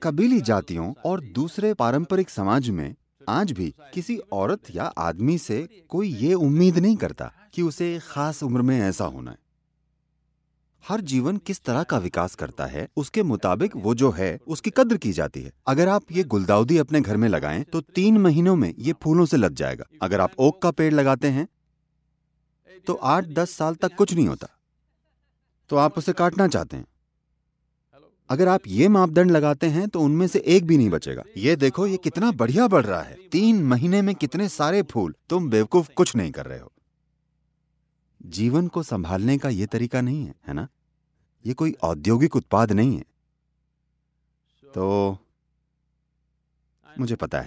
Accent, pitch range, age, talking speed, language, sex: Indian, 110-175 Hz, 30-49, 145 wpm, English, male